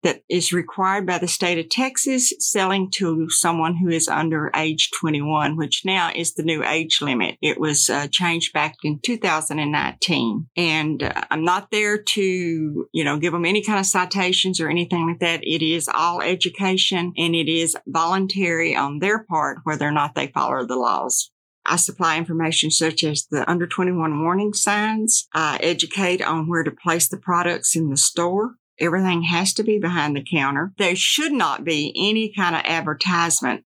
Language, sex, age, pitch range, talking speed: English, female, 50-69, 160-190 Hz, 180 wpm